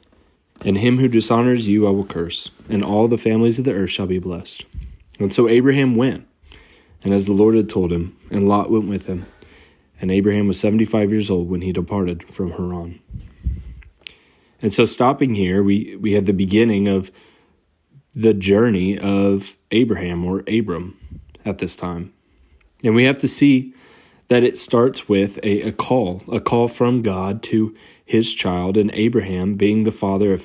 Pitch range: 95-110 Hz